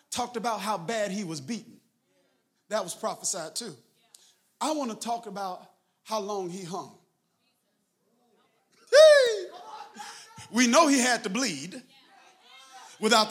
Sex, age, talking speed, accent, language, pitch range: male, 40-59, 120 wpm, American, English, 205-280 Hz